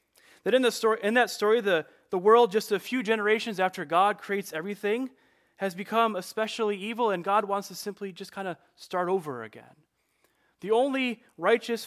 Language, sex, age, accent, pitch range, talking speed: English, male, 30-49, American, 155-205 Hz, 180 wpm